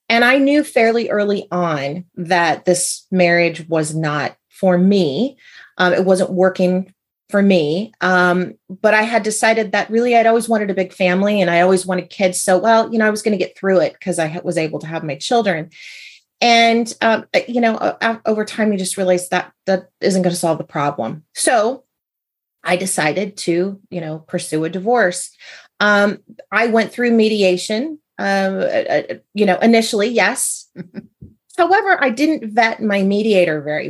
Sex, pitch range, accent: female, 180-230 Hz, American